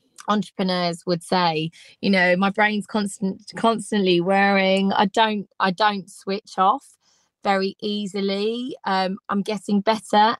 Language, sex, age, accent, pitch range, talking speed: English, female, 20-39, British, 190-230 Hz, 125 wpm